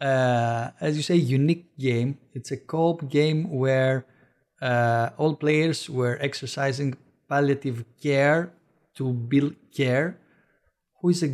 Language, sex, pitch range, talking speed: English, male, 130-165 Hz, 125 wpm